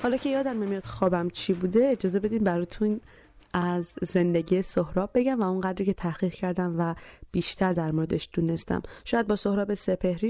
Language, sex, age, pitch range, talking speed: Persian, female, 30-49, 170-205 Hz, 170 wpm